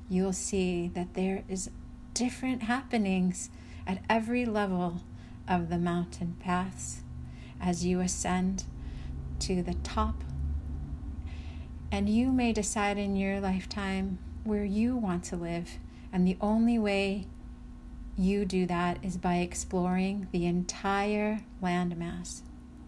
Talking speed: 120 wpm